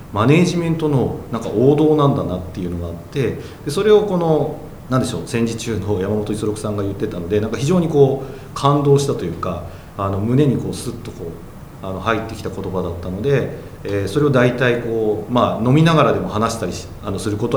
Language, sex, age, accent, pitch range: Japanese, male, 40-59, native, 105-150 Hz